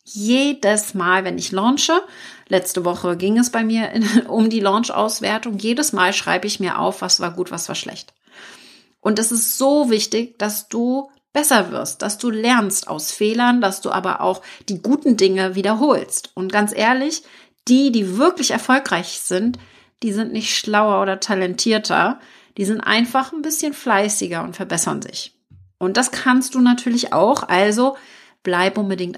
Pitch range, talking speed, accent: 195-250 Hz, 165 wpm, German